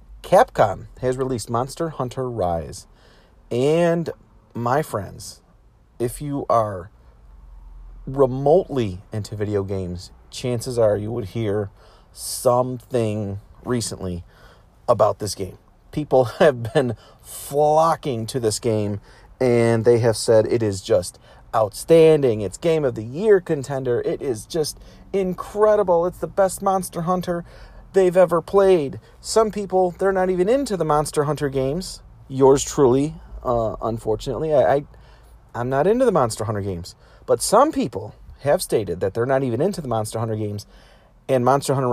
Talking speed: 140 wpm